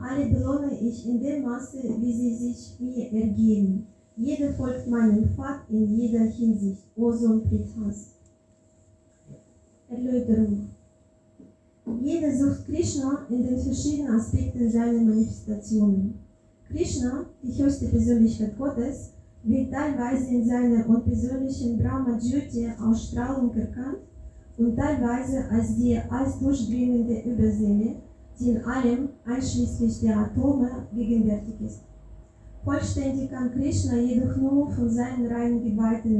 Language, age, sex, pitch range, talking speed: German, 30-49, female, 220-260 Hz, 110 wpm